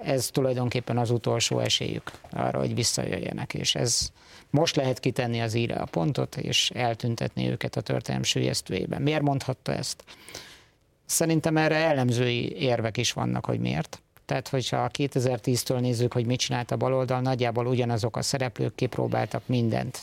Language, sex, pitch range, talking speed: Hungarian, male, 120-135 Hz, 145 wpm